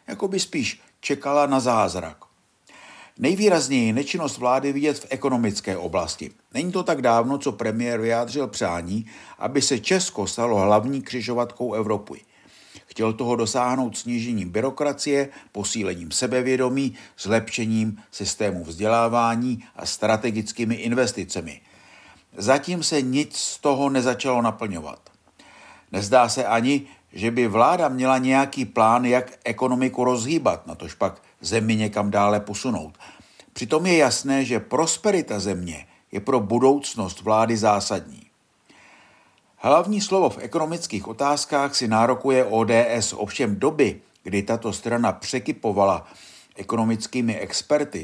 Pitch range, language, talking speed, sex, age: 110-135 Hz, Czech, 120 wpm, male, 50-69